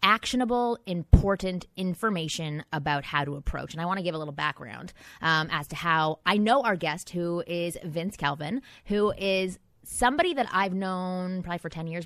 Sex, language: female, English